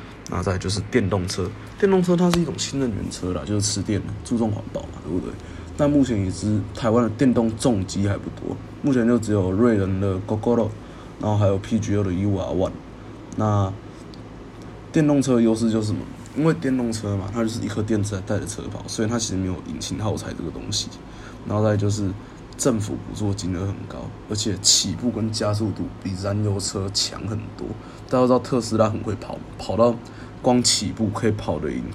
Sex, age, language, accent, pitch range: male, 20-39, Chinese, native, 100-120 Hz